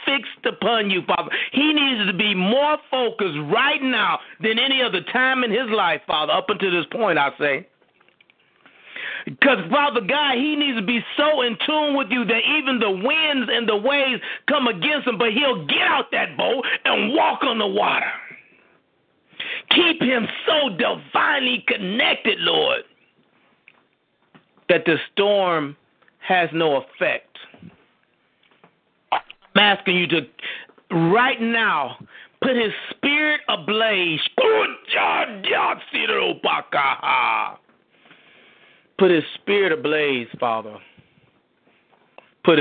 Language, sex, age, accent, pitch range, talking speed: English, male, 40-59, American, 175-280 Hz, 120 wpm